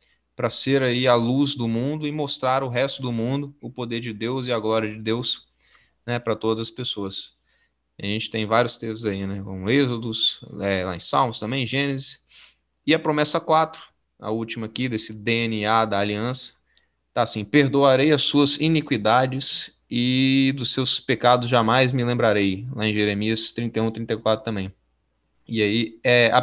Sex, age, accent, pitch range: male, 20-39, Brazilian, 110-135 Hz